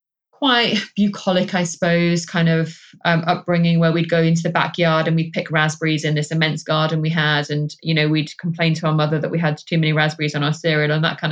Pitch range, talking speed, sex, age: 165-190 Hz, 235 wpm, female, 20-39